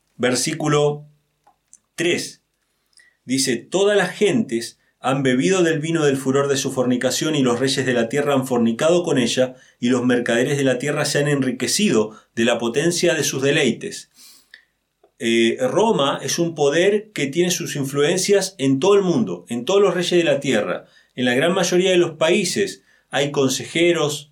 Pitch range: 125-170 Hz